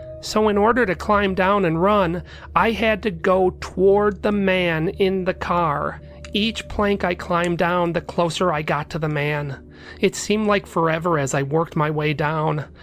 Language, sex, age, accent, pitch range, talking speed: English, male, 30-49, American, 140-185 Hz, 185 wpm